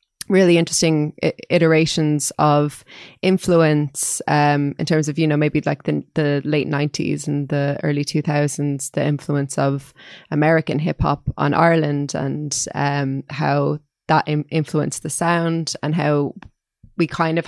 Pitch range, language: 140-160 Hz, English